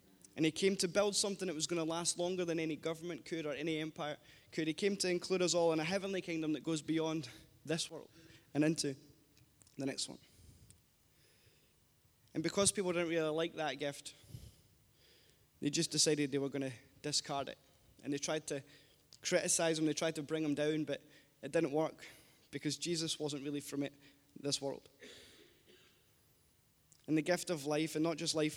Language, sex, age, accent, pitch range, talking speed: English, male, 20-39, British, 145-170 Hz, 185 wpm